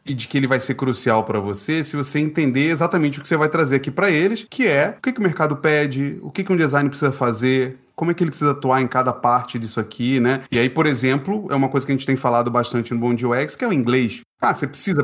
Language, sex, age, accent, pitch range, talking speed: Portuguese, male, 30-49, Brazilian, 130-180 Hz, 285 wpm